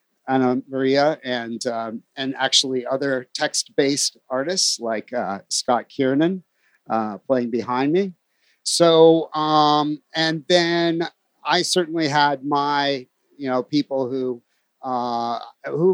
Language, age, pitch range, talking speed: English, 50-69, 130-165 Hz, 120 wpm